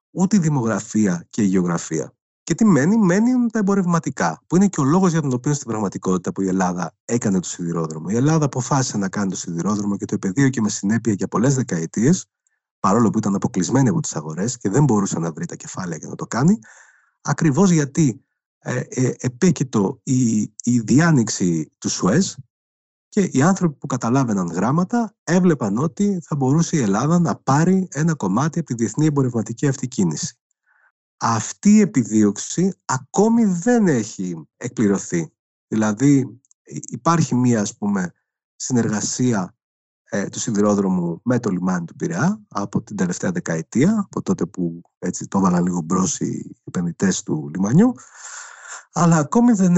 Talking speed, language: 160 wpm, Greek